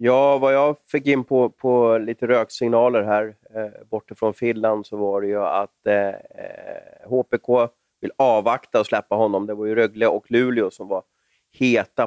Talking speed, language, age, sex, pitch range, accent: 175 wpm, Swedish, 30-49, male, 105-125 Hz, native